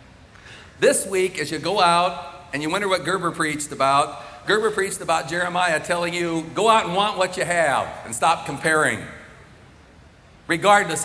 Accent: American